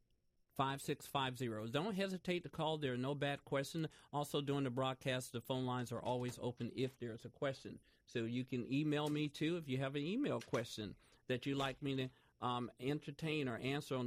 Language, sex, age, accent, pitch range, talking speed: English, male, 50-69, American, 125-150 Hz, 205 wpm